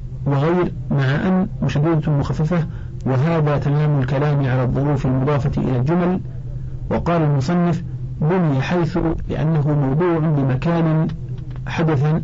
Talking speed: 105 wpm